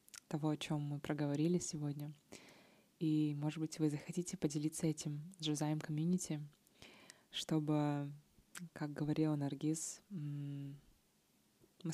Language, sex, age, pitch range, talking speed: Russian, female, 20-39, 150-175 Hz, 105 wpm